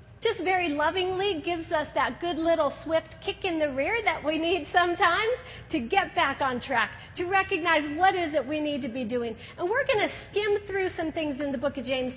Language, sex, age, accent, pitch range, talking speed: English, female, 40-59, American, 270-365 Hz, 220 wpm